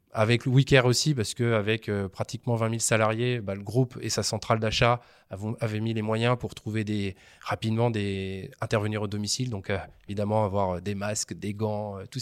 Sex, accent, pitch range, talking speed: male, French, 110-130 Hz, 195 wpm